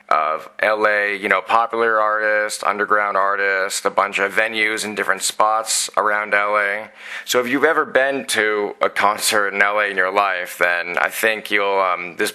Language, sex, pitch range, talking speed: English, male, 100-115 Hz, 175 wpm